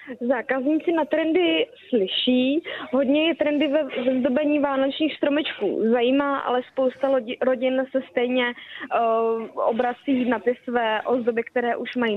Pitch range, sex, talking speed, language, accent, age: 235-275 Hz, female, 120 wpm, Czech, native, 20-39